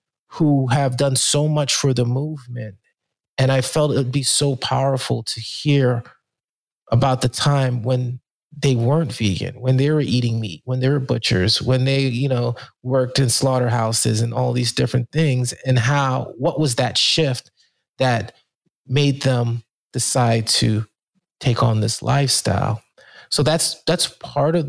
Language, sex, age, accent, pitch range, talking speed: English, male, 30-49, American, 120-140 Hz, 160 wpm